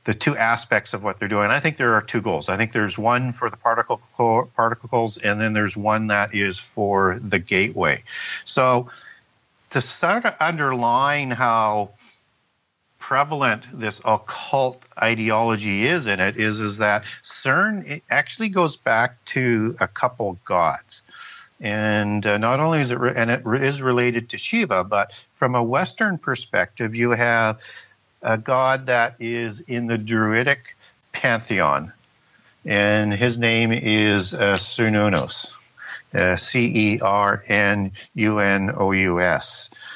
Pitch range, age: 100-120 Hz, 50-69